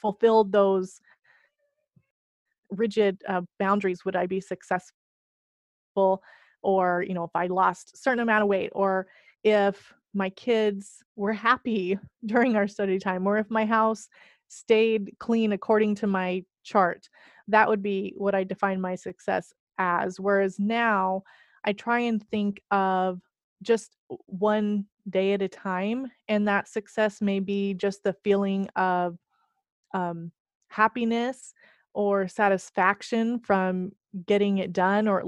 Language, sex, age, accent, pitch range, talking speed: English, female, 30-49, American, 190-220 Hz, 140 wpm